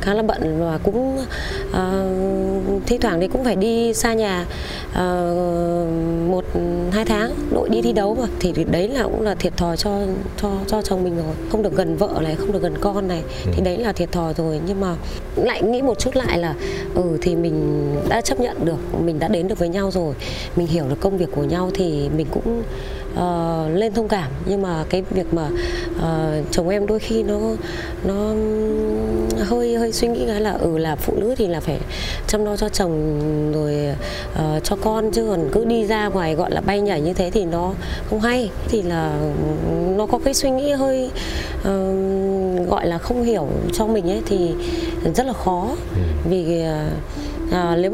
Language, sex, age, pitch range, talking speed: Vietnamese, female, 20-39, 165-215 Hz, 200 wpm